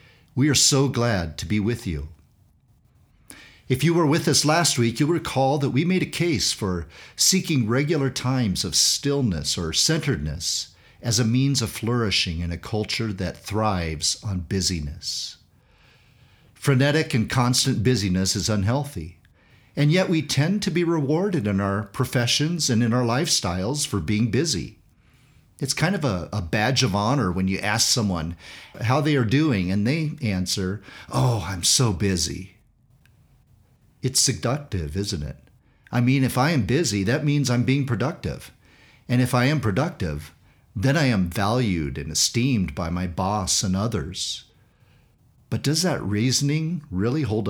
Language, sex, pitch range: English, male, 95-140 Hz